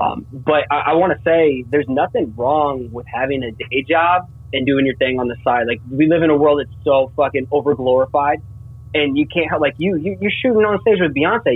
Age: 20-39